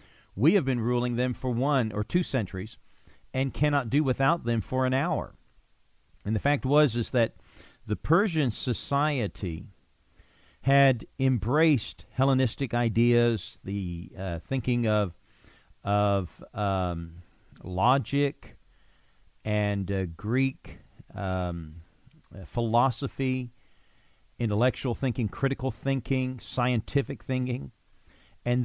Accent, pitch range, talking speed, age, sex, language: American, 95-130 Hz, 105 wpm, 50-69, male, English